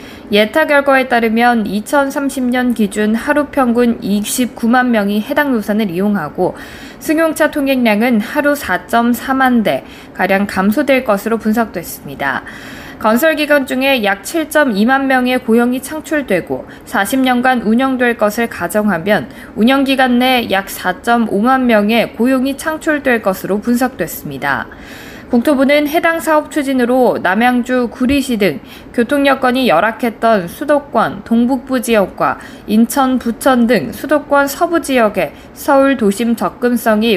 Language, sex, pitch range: Korean, female, 215-275 Hz